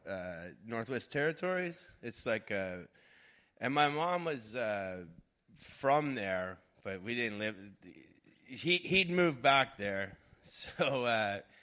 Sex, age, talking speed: male, 30-49, 125 wpm